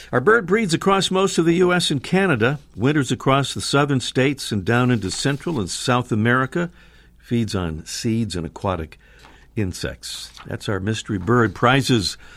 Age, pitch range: 60-79, 95-150 Hz